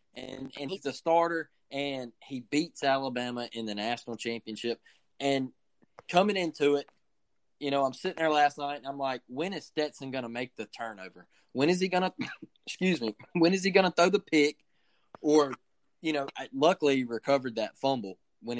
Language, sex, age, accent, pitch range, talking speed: English, male, 20-39, American, 130-170 Hz, 195 wpm